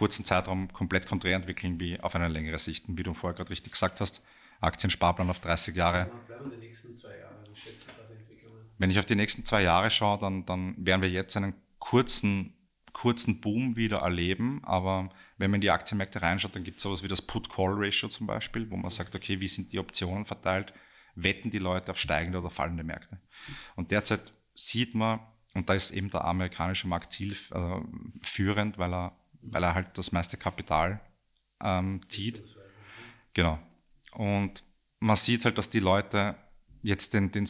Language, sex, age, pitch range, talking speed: German, male, 30-49, 90-105 Hz, 175 wpm